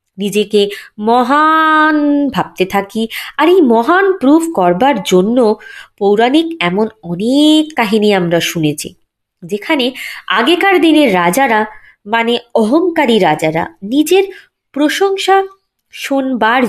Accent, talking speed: native, 95 wpm